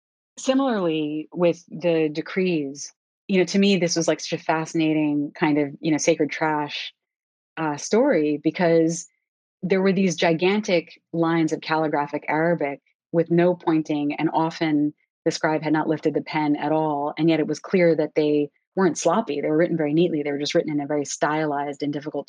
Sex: female